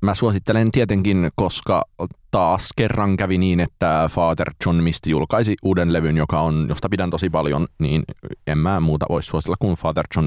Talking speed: 175 wpm